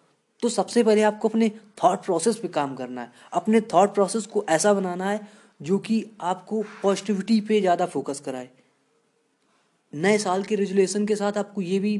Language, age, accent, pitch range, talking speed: Hindi, 20-39, native, 155-195 Hz, 175 wpm